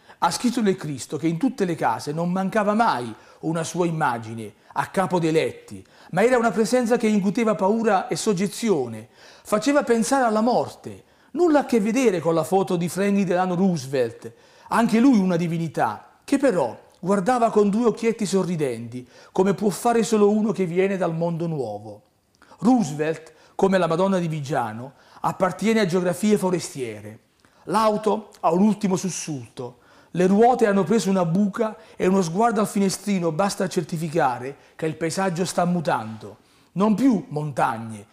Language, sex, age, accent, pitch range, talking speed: Italian, male, 40-59, native, 155-210 Hz, 160 wpm